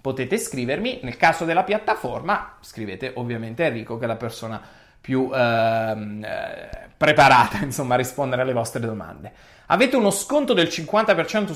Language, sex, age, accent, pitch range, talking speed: Italian, male, 30-49, native, 125-200 Hz, 140 wpm